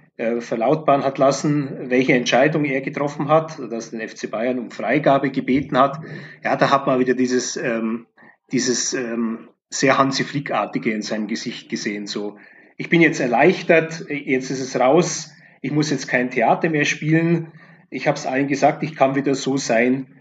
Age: 30-49